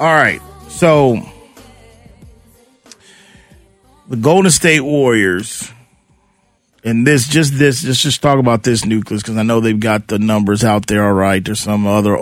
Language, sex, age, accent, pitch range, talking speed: English, male, 40-59, American, 110-130 Hz, 145 wpm